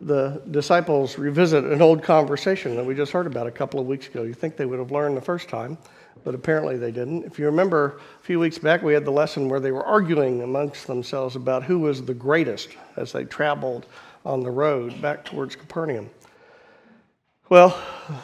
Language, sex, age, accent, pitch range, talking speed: English, male, 50-69, American, 130-165 Hz, 200 wpm